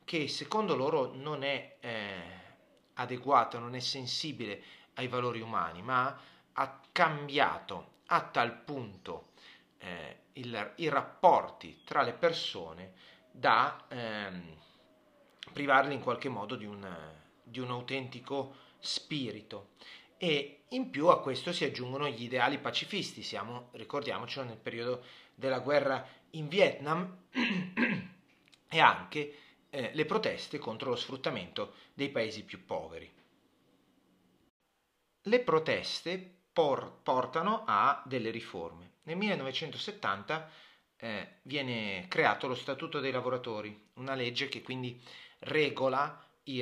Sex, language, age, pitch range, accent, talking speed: male, Italian, 30-49, 115-150 Hz, native, 115 wpm